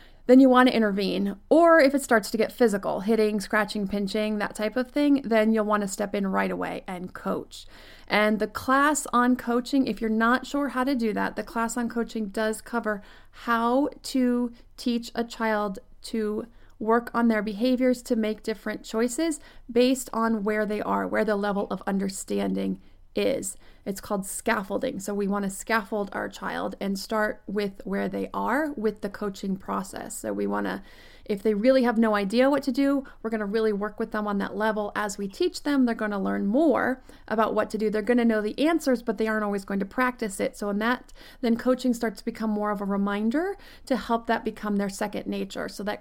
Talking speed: 215 wpm